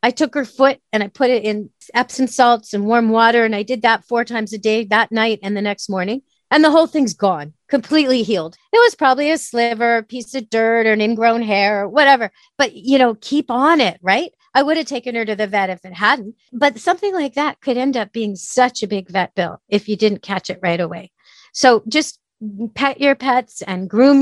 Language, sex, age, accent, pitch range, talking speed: English, female, 40-59, American, 205-260 Hz, 235 wpm